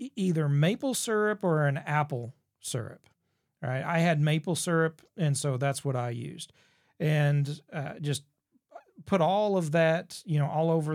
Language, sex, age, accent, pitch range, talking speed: English, male, 40-59, American, 135-165 Hz, 160 wpm